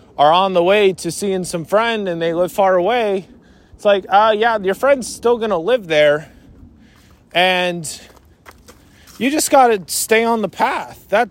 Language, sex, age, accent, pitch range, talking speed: English, male, 20-39, American, 150-210 Hz, 170 wpm